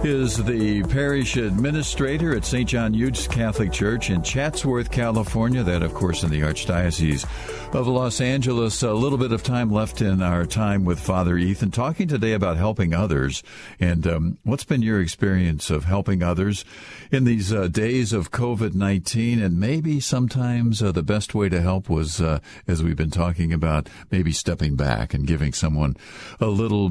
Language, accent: English, American